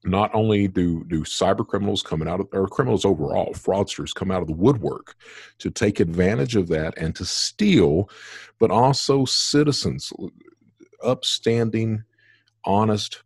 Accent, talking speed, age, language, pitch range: American, 140 wpm, 50-69, English, 75-105 Hz